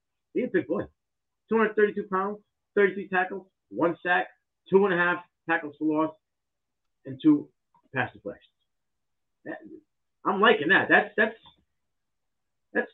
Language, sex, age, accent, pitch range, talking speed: English, male, 30-49, American, 150-205 Hz, 125 wpm